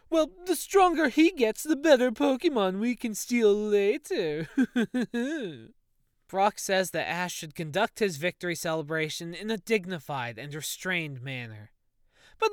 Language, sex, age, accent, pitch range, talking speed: English, male, 20-39, American, 165-245 Hz, 135 wpm